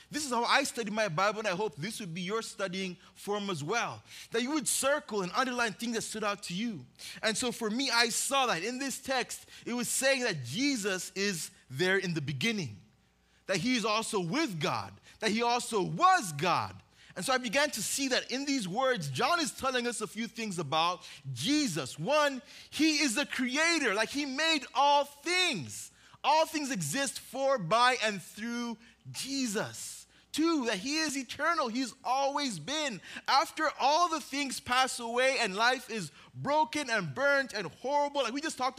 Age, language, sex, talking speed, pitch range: 20-39, English, male, 190 wpm, 165-255 Hz